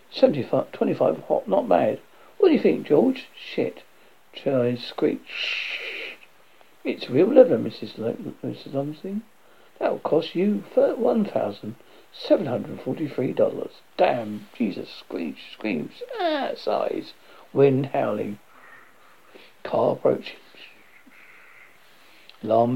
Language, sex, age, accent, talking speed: English, male, 60-79, British, 95 wpm